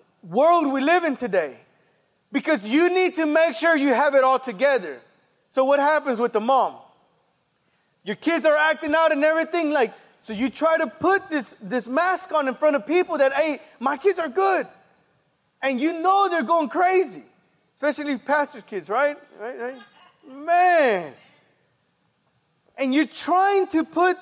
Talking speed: 160 wpm